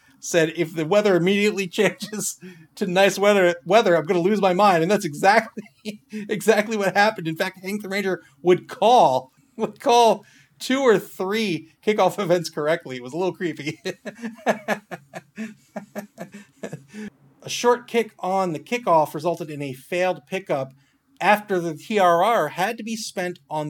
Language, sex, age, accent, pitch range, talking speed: English, male, 40-59, American, 150-195 Hz, 155 wpm